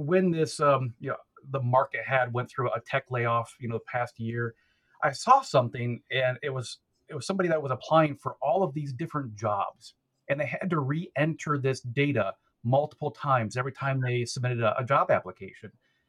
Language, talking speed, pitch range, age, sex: English, 200 wpm, 120-150 Hz, 40-59, male